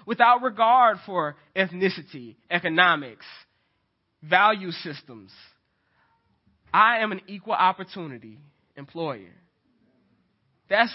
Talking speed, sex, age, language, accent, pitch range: 75 wpm, male, 20-39, English, American, 160-220 Hz